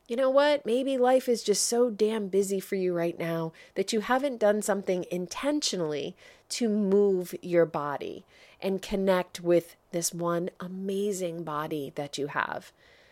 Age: 30-49